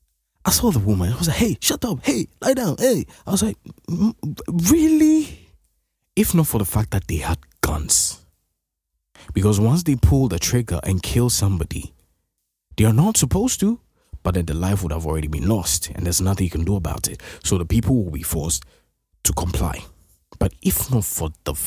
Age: 20-39